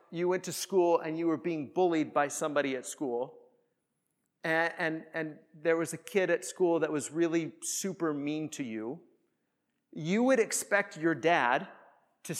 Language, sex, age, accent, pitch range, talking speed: English, male, 40-59, American, 160-225 Hz, 165 wpm